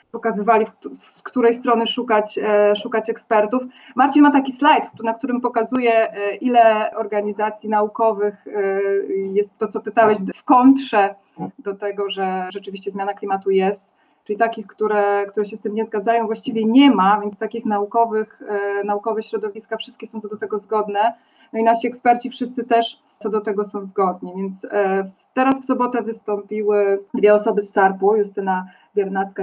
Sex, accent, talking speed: female, native, 155 wpm